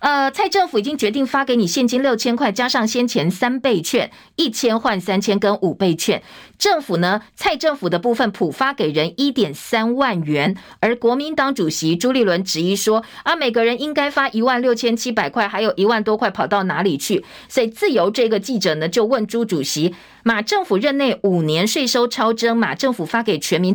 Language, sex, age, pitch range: Chinese, female, 50-69, 195-260 Hz